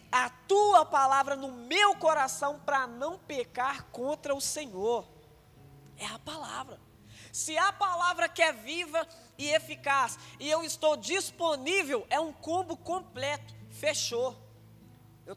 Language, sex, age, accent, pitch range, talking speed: Portuguese, female, 20-39, Brazilian, 235-310 Hz, 130 wpm